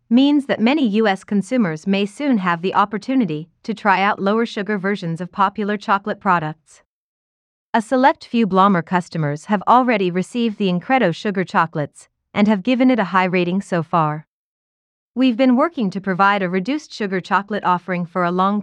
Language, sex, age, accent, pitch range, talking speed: English, female, 30-49, American, 175-230 Hz, 170 wpm